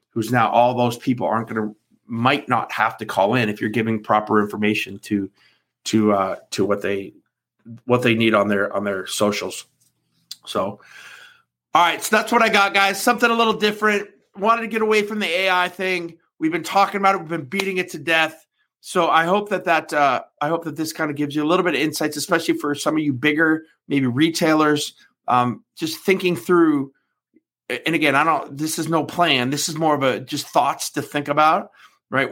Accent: American